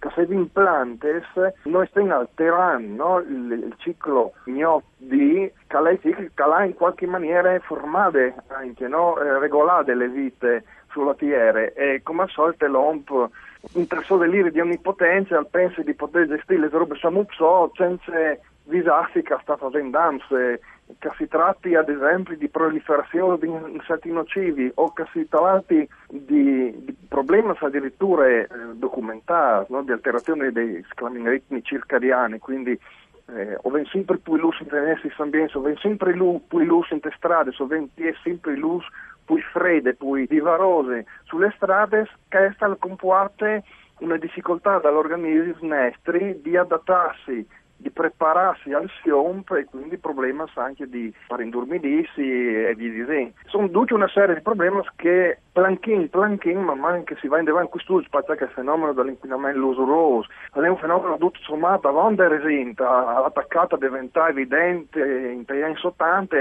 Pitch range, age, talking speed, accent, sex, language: 140-185 Hz, 40-59, 140 wpm, native, male, Italian